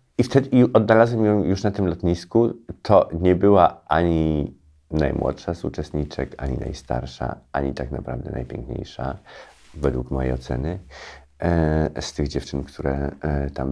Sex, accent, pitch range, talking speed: male, native, 65-80 Hz, 125 wpm